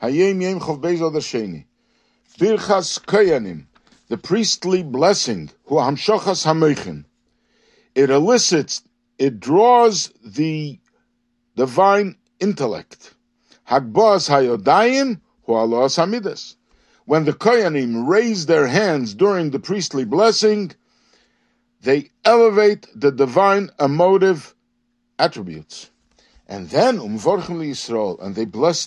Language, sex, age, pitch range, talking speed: English, male, 60-79, 135-215 Hz, 65 wpm